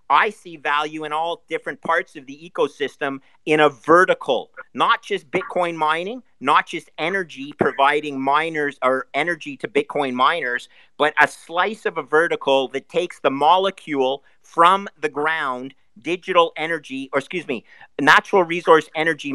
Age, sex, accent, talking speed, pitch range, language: 50-69, male, American, 150 wpm, 140-165 Hz, English